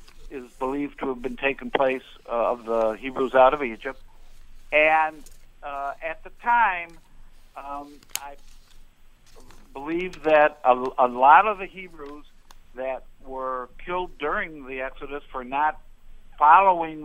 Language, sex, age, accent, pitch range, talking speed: English, male, 60-79, American, 130-165 Hz, 130 wpm